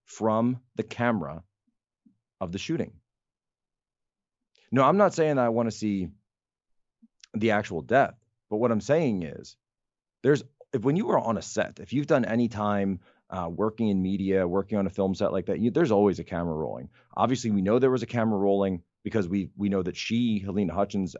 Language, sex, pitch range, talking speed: English, male, 95-120 Hz, 195 wpm